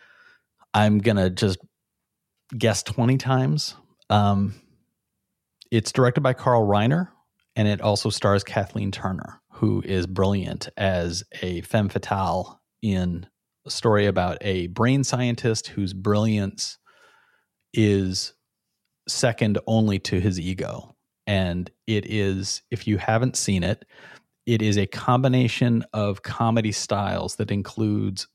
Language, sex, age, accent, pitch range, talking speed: English, male, 30-49, American, 95-115 Hz, 120 wpm